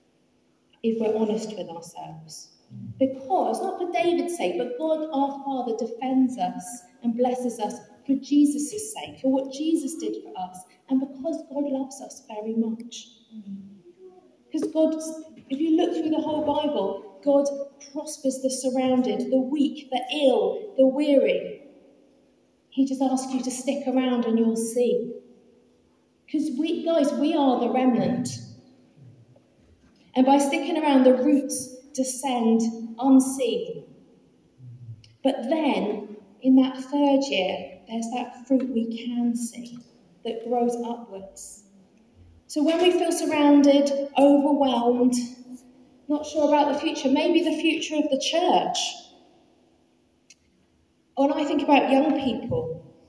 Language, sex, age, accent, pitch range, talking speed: English, female, 40-59, British, 235-295 Hz, 130 wpm